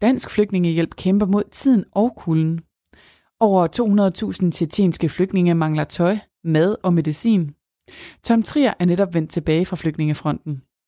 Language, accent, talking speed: Danish, native, 130 wpm